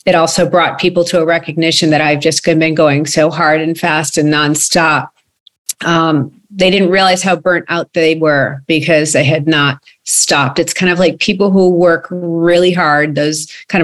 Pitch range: 155-180 Hz